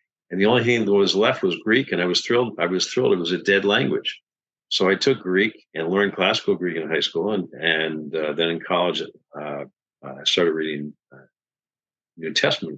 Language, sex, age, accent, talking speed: English, male, 50-69, American, 210 wpm